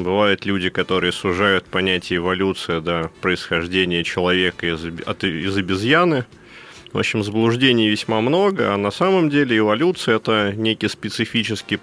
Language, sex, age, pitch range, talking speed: Russian, male, 30-49, 90-120 Hz, 125 wpm